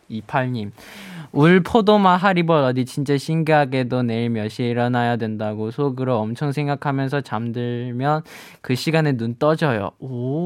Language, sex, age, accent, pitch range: Korean, male, 20-39, native, 115-150 Hz